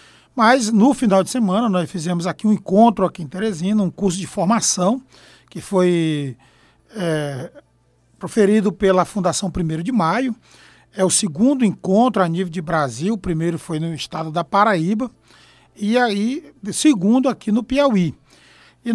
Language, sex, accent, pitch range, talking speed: Portuguese, male, Brazilian, 170-230 Hz, 150 wpm